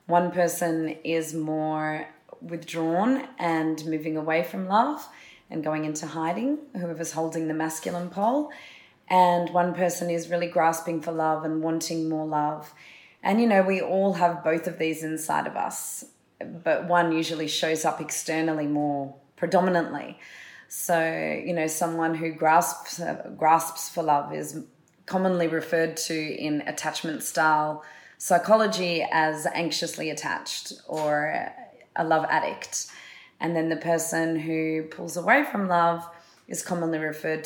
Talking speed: 145 wpm